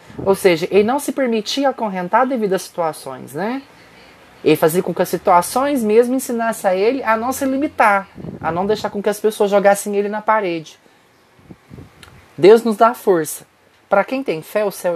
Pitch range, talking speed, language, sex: 160-215 Hz, 185 wpm, Portuguese, male